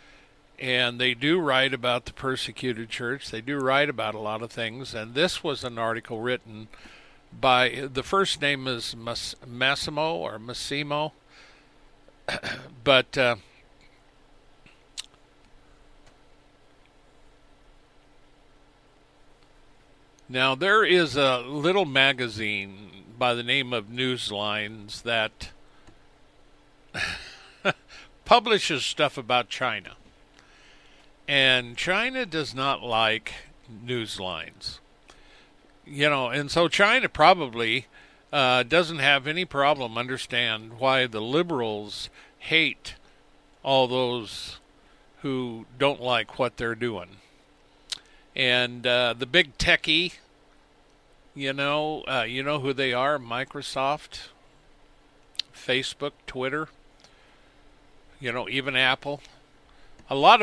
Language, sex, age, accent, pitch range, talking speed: English, male, 60-79, American, 115-145 Hz, 100 wpm